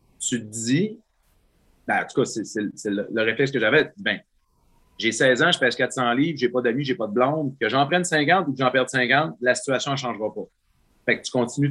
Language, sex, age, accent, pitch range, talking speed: French, male, 30-49, Canadian, 105-140 Hz, 250 wpm